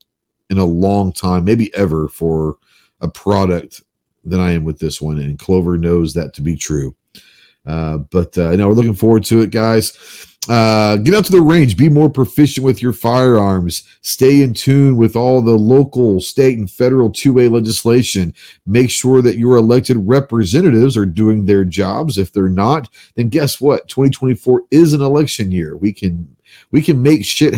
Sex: male